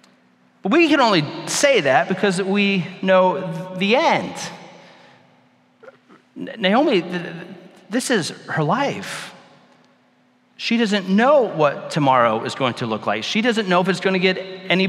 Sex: male